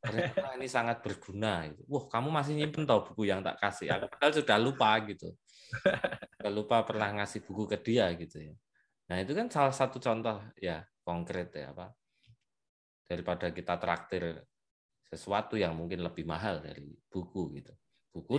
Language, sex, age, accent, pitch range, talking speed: Indonesian, male, 20-39, native, 85-110 Hz, 150 wpm